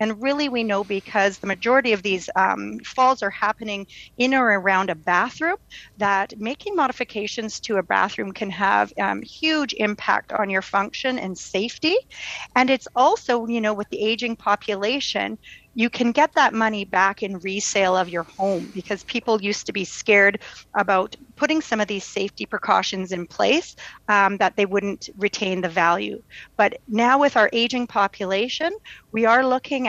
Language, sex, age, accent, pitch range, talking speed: English, female, 40-59, American, 195-240 Hz, 170 wpm